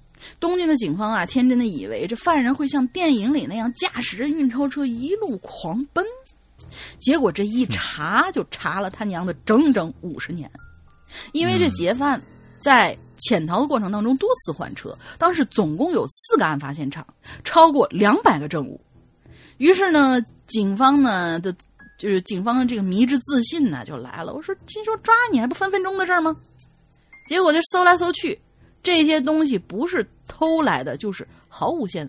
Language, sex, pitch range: Chinese, female, 195-315 Hz